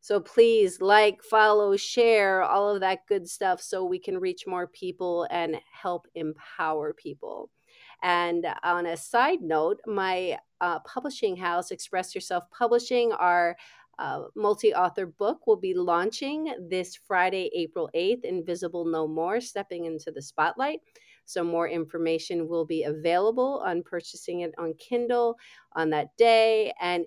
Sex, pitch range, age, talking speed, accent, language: female, 170-285 Hz, 40-59, 145 wpm, American, English